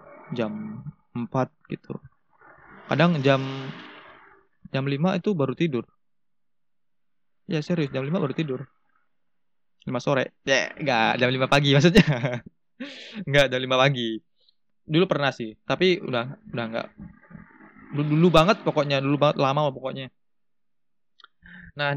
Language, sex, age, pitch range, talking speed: Indonesian, male, 20-39, 130-165 Hz, 120 wpm